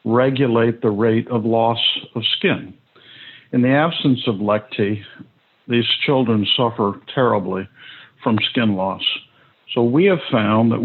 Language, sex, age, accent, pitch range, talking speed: English, male, 50-69, American, 110-135 Hz, 135 wpm